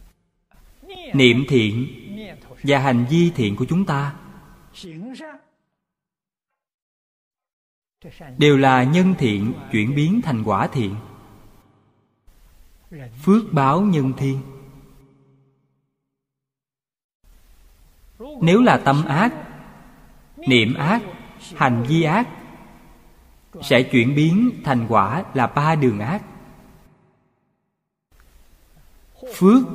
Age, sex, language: 20-39, male, Vietnamese